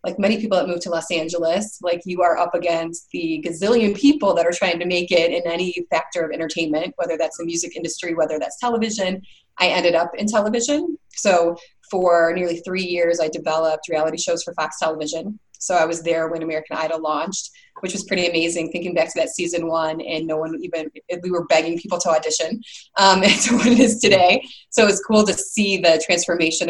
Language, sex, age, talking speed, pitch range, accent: English, female, 20-39, 210 wpm, 160-190 Hz, American